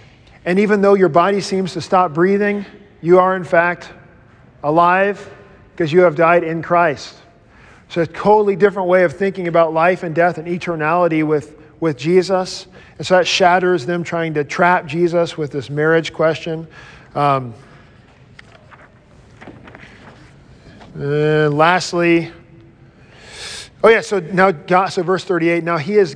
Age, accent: 40-59, American